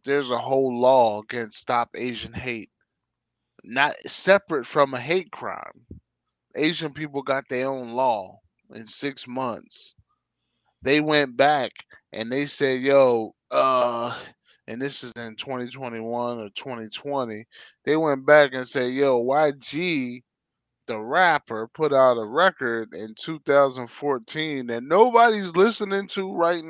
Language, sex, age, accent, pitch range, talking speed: English, male, 20-39, American, 115-150 Hz, 130 wpm